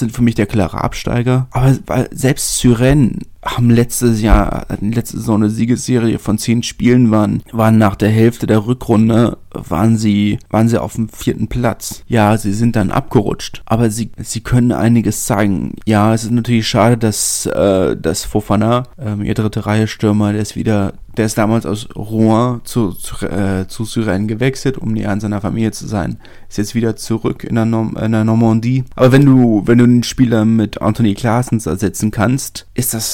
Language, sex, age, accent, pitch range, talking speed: German, male, 30-49, German, 105-120 Hz, 185 wpm